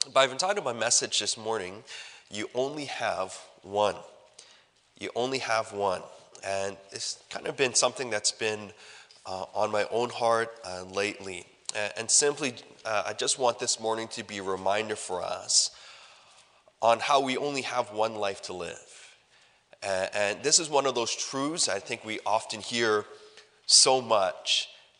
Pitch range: 105-135 Hz